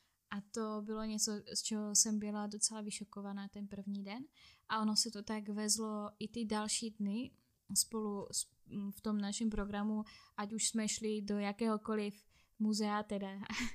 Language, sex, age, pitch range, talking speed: Slovak, female, 10-29, 210-250 Hz, 165 wpm